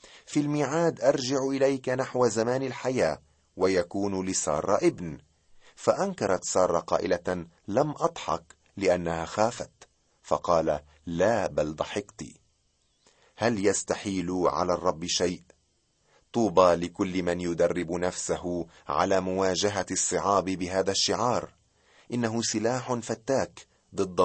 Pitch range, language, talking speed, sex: 90-125 Hz, Arabic, 100 wpm, male